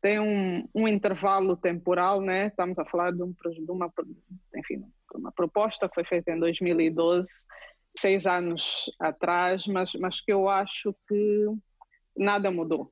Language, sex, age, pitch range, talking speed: English, female, 20-39, 175-210 Hz, 155 wpm